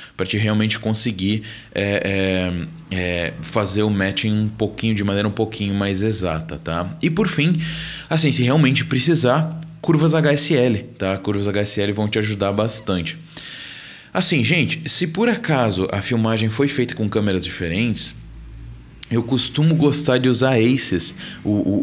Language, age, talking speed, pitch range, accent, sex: Portuguese, 20-39, 150 wpm, 105-145 Hz, Brazilian, male